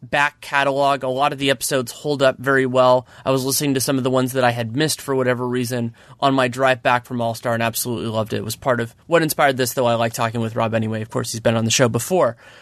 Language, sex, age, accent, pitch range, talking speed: English, male, 30-49, American, 125-150 Hz, 275 wpm